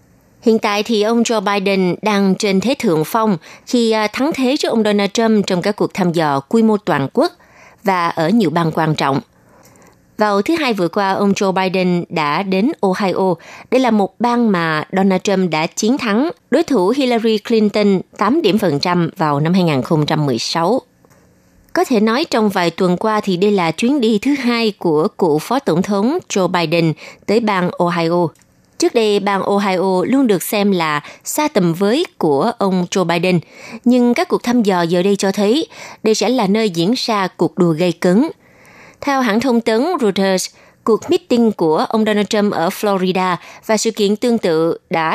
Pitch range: 175-225 Hz